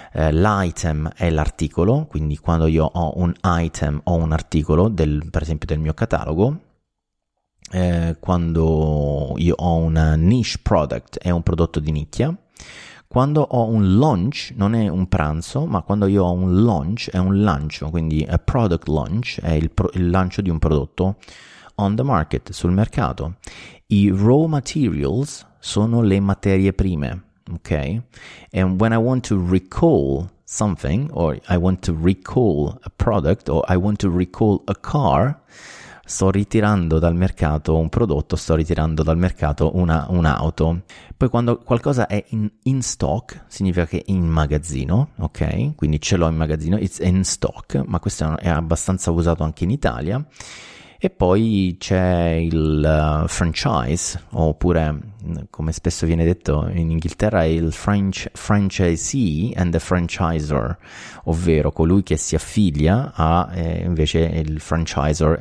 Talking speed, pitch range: 150 wpm, 80-100 Hz